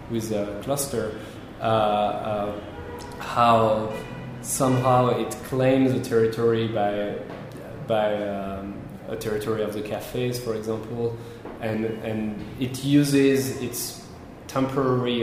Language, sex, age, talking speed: English, male, 20-39, 105 wpm